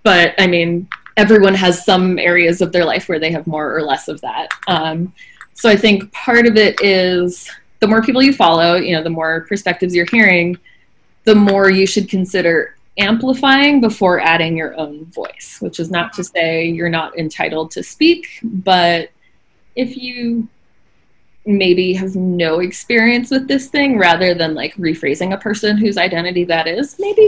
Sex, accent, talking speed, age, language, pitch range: female, American, 175 wpm, 20-39, English, 170-235 Hz